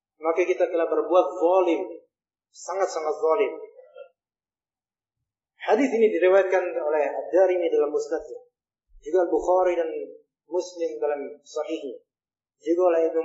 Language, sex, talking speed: Indonesian, male, 100 wpm